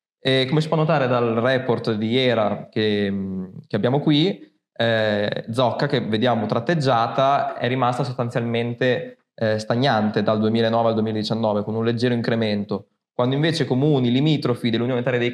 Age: 20-39